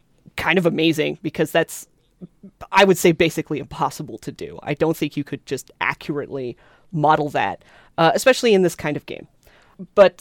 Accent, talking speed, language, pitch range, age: American, 170 wpm, English, 155-210 Hz, 30-49